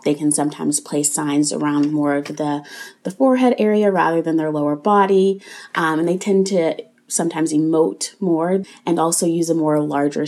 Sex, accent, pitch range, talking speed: female, American, 145-170 Hz, 180 wpm